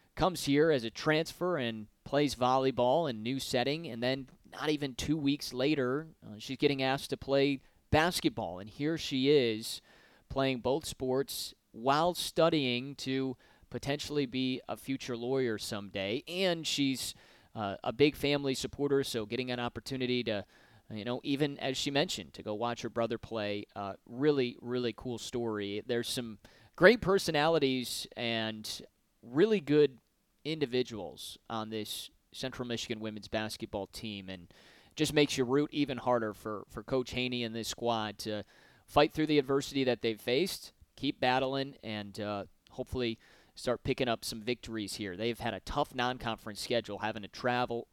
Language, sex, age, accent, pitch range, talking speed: English, male, 30-49, American, 110-140 Hz, 160 wpm